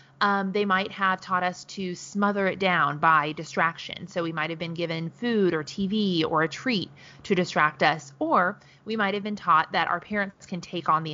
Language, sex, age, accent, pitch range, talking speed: English, female, 30-49, American, 160-200 Hz, 205 wpm